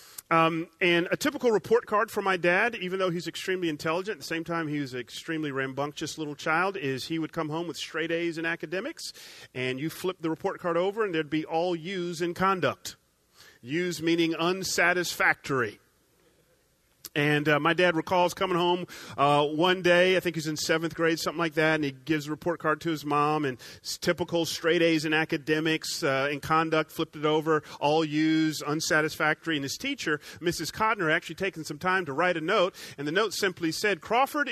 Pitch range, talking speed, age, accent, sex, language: 150-175 Hz, 200 wpm, 40-59, American, male, English